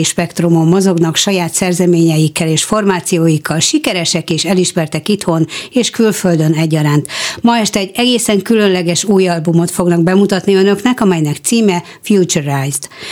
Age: 60-79